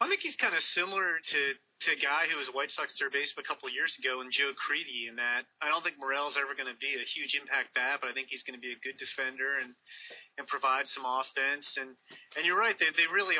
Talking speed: 275 wpm